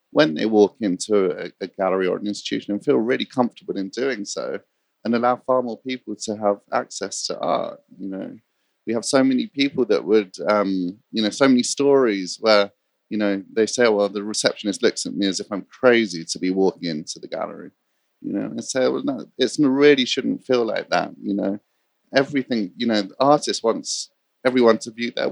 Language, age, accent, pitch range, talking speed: English, 30-49, British, 100-125 Hz, 210 wpm